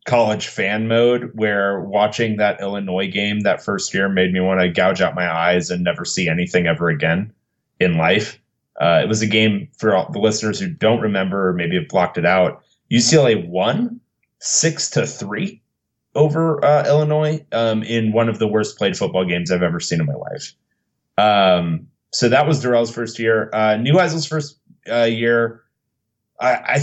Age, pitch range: 30-49, 105-135 Hz